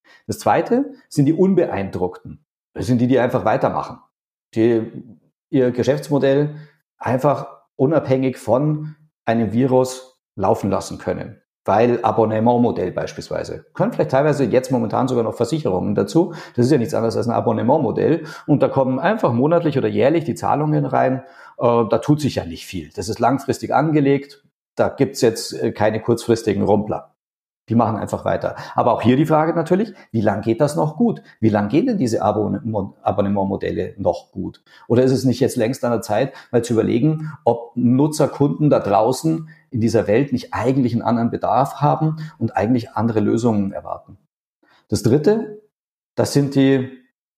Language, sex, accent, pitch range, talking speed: German, male, German, 115-145 Hz, 160 wpm